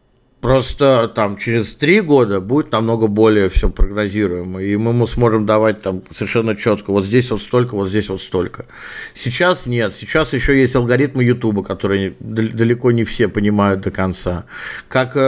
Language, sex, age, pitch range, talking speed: Russian, male, 50-69, 110-140 Hz, 155 wpm